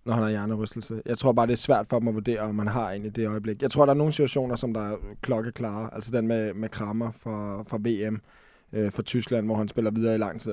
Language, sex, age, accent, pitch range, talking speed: Danish, male, 20-39, native, 110-125 Hz, 280 wpm